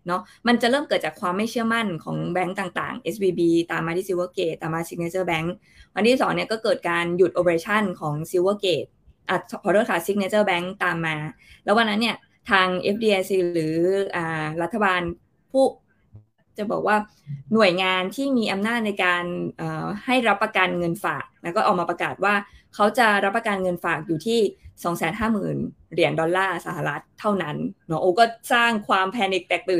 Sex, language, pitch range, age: female, Thai, 175-220 Hz, 20-39